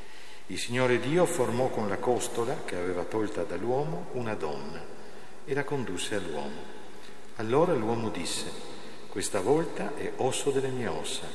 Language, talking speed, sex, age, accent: Italian, 145 wpm, male, 50-69, native